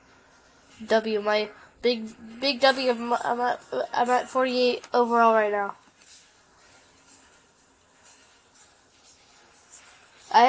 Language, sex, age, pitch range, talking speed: English, female, 10-29, 205-235 Hz, 90 wpm